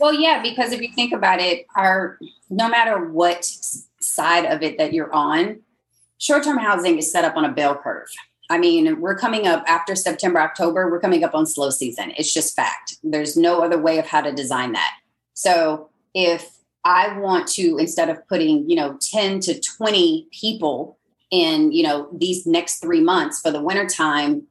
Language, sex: English, female